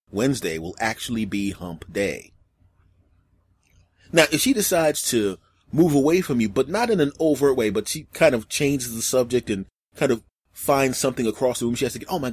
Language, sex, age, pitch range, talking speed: English, male, 30-49, 90-150 Hz, 205 wpm